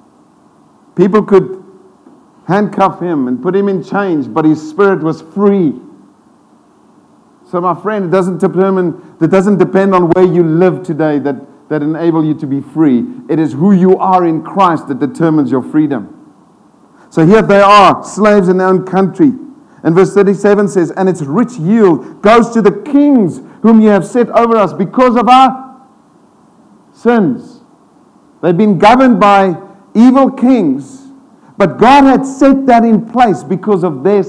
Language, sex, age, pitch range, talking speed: English, male, 50-69, 175-255 Hz, 165 wpm